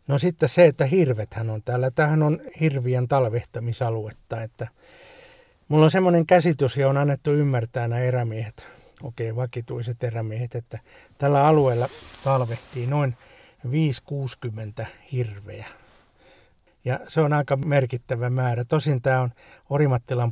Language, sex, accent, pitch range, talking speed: Finnish, male, native, 120-140 Hz, 120 wpm